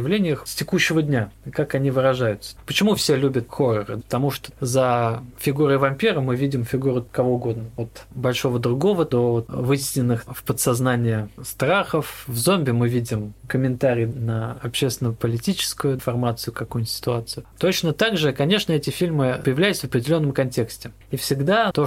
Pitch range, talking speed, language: 120-145 Hz, 140 wpm, Russian